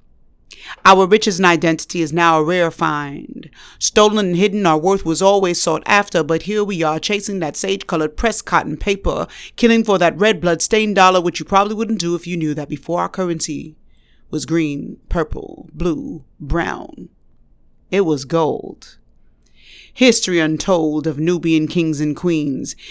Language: English